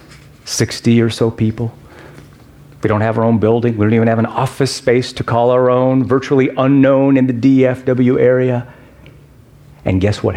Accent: American